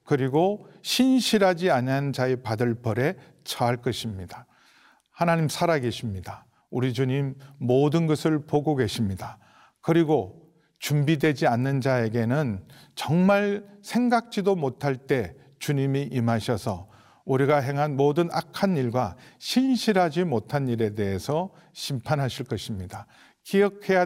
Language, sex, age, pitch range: Korean, male, 50-69, 120-165 Hz